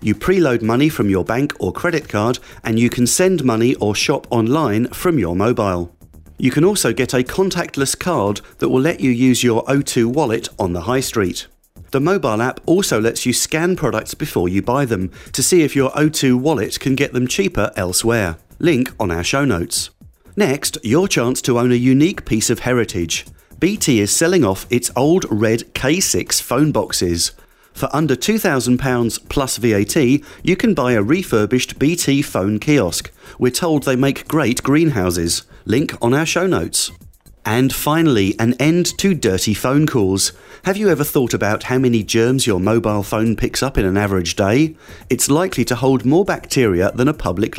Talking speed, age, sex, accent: 185 wpm, 40-59, male, British